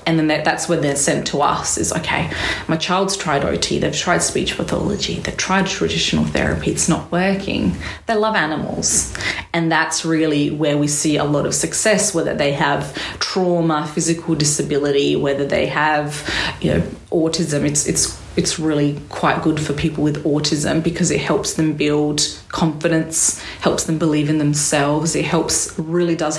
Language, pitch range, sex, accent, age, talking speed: English, 145-170 Hz, female, Australian, 30-49, 170 wpm